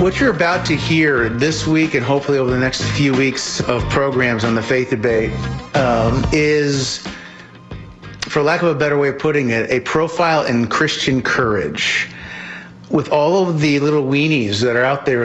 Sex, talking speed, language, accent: male, 180 wpm, English, American